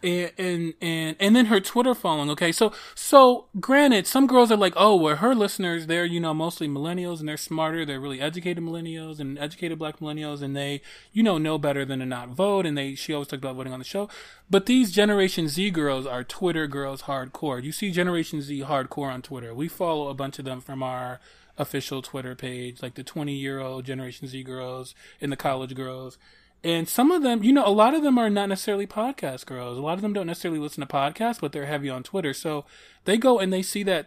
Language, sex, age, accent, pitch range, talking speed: English, male, 20-39, American, 140-185 Hz, 225 wpm